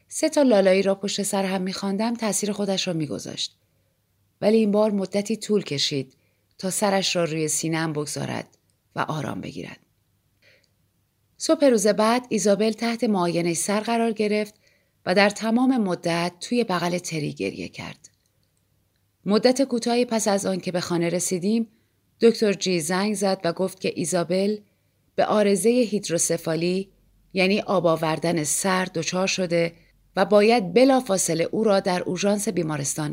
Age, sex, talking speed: 30-49, female, 140 wpm